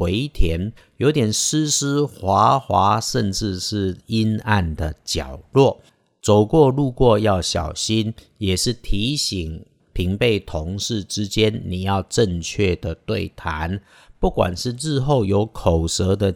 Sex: male